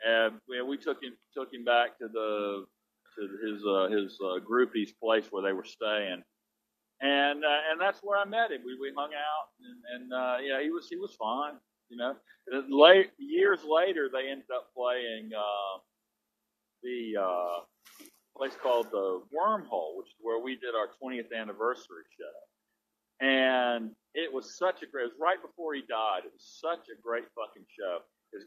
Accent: American